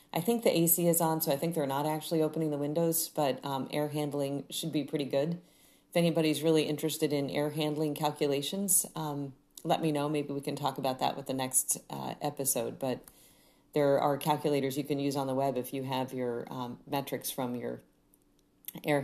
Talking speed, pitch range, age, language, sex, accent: 205 wpm, 140-170 Hz, 40-59, English, female, American